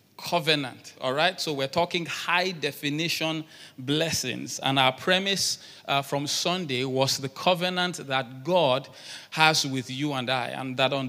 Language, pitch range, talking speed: English, 135-165 Hz, 145 wpm